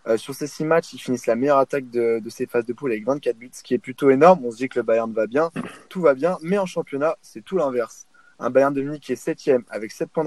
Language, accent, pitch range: French, French, 120-150 Hz